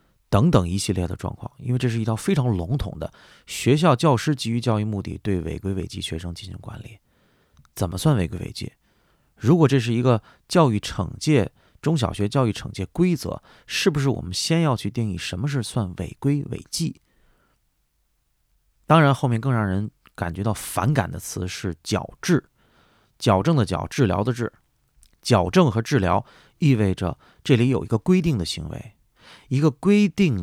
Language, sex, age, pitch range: Chinese, male, 30-49, 95-140 Hz